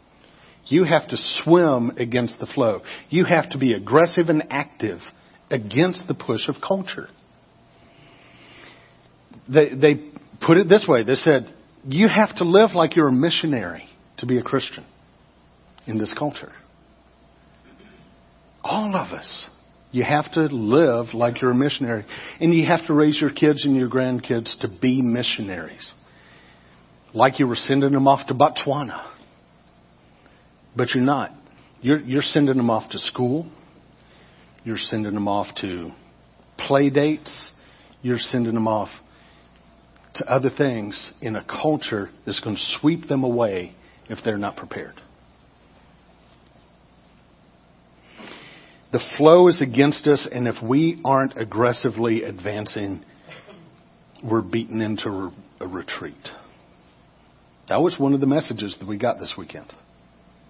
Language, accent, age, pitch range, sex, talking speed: English, American, 50-69, 105-150 Hz, male, 135 wpm